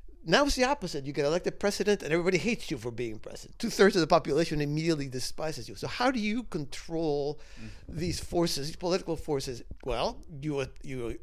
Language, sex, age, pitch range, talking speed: English, male, 60-79, 130-180 Hz, 185 wpm